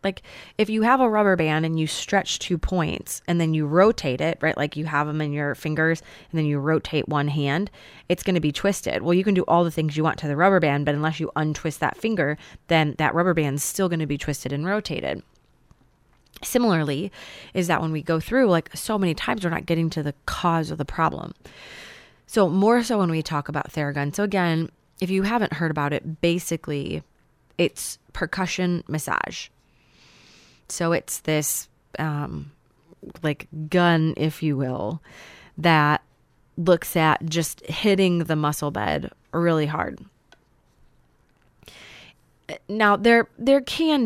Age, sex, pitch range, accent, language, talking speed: 20-39, female, 150-190 Hz, American, English, 175 wpm